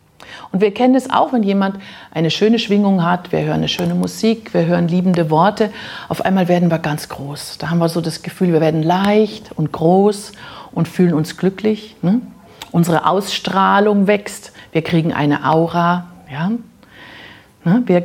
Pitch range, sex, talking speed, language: 170-210 Hz, female, 165 wpm, German